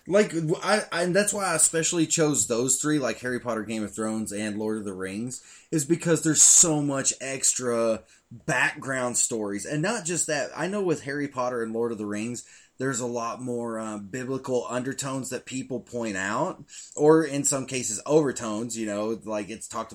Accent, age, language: American, 20-39, English